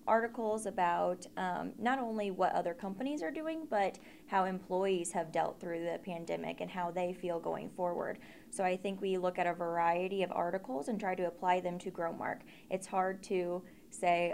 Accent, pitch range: American, 175-205 Hz